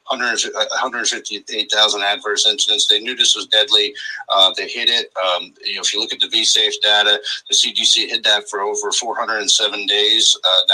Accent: American